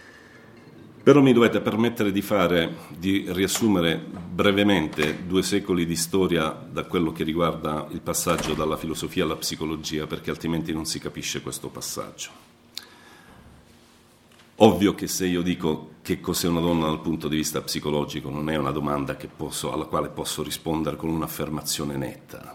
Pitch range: 75-90 Hz